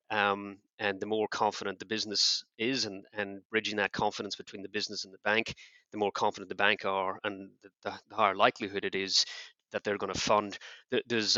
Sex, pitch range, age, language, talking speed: male, 100-105 Hz, 30-49, English, 200 wpm